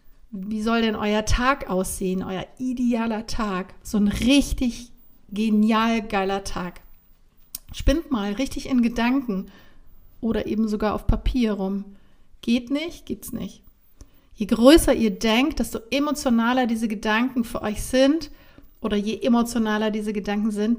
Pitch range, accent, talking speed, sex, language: 210-250 Hz, German, 135 wpm, female, German